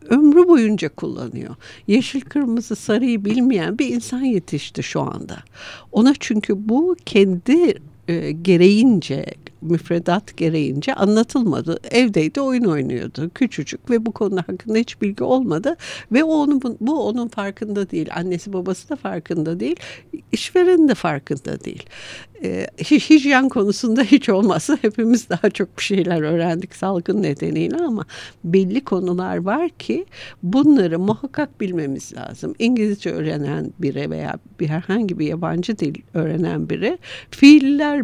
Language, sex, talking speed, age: Turkish, female, 130 wpm, 60-79